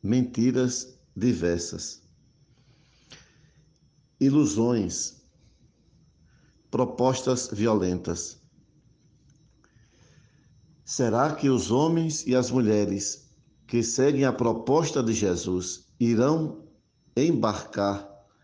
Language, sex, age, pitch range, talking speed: Portuguese, male, 60-79, 110-140 Hz, 65 wpm